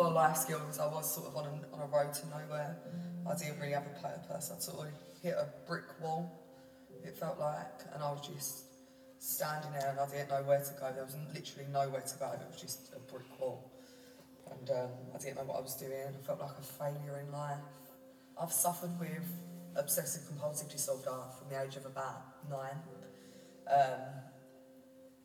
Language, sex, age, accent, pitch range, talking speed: English, female, 20-39, British, 130-165 Hz, 195 wpm